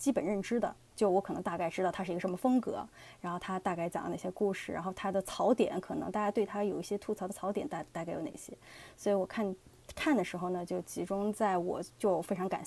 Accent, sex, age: native, female, 20-39